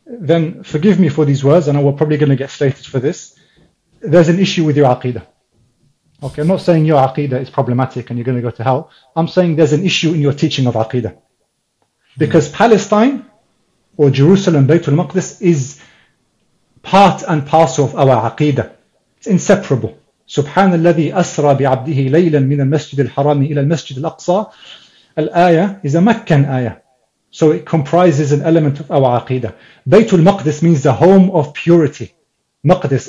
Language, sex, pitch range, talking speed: English, male, 135-175 Hz, 165 wpm